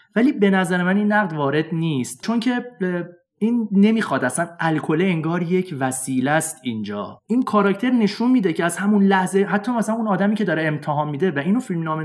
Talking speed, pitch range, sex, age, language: 190 wpm, 145-205 Hz, male, 30-49, Persian